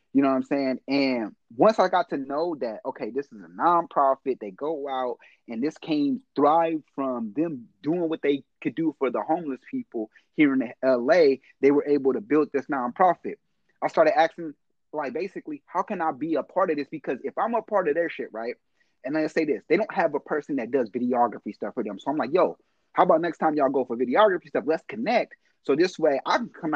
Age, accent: 30-49, American